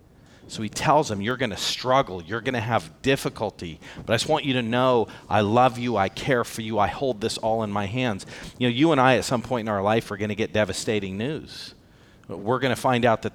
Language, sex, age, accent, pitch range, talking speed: English, male, 40-59, American, 105-140 Hz, 255 wpm